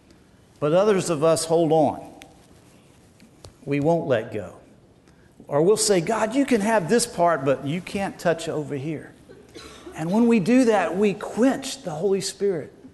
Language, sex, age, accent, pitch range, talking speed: English, male, 50-69, American, 145-210 Hz, 160 wpm